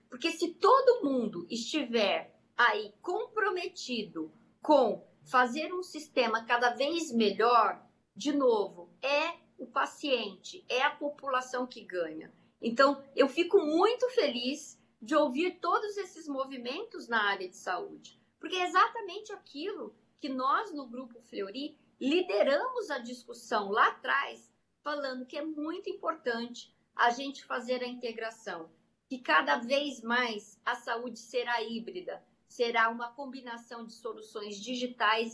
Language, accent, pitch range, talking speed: Portuguese, Brazilian, 235-315 Hz, 130 wpm